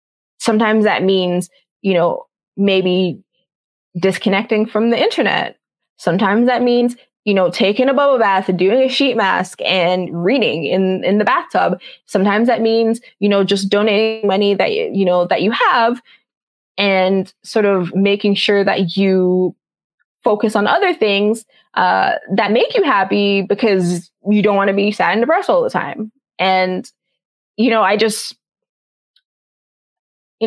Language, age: English, 20-39